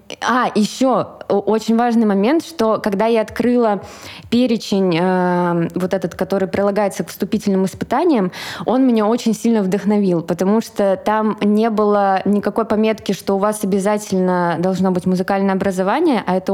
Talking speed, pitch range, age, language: 145 wpm, 190-225 Hz, 20-39, Russian